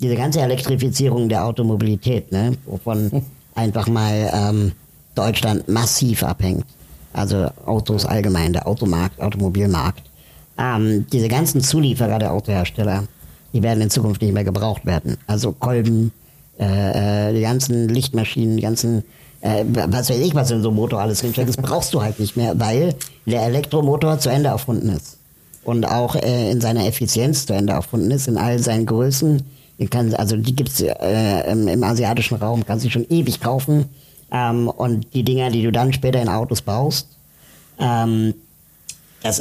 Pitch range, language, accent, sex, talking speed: 105-135 Hz, German, German, male, 165 wpm